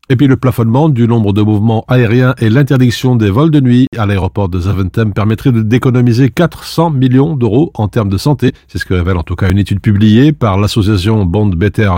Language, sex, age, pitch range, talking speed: French, male, 50-69, 100-125 Hz, 210 wpm